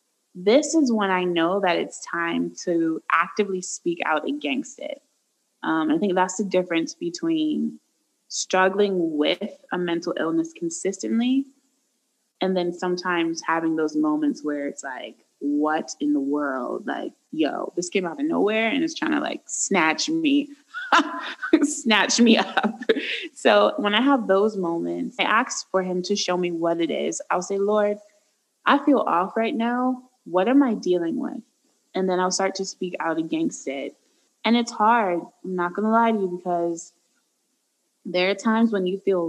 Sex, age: female, 20-39